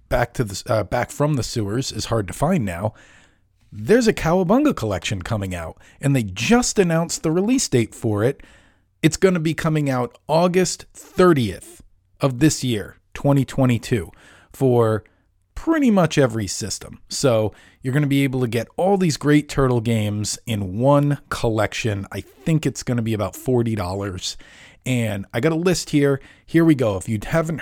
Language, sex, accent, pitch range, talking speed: English, male, American, 105-150 Hz, 175 wpm